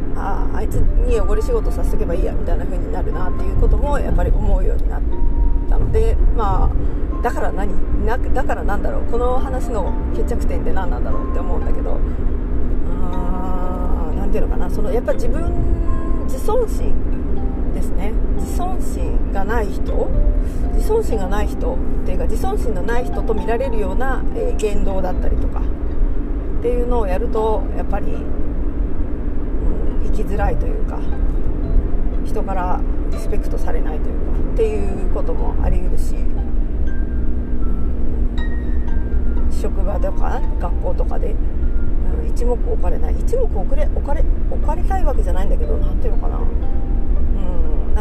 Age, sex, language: 40-59, female, Japanese